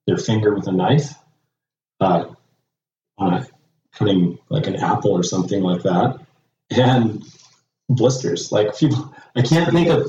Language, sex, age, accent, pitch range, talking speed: English, male, 30-49, American, 90-140 Hz, 150 wpm